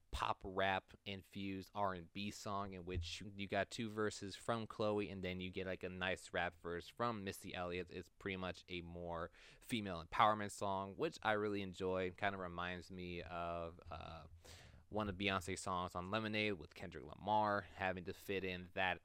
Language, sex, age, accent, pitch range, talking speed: English, male, 20-39, American, 90-100 Hz, 180 wpm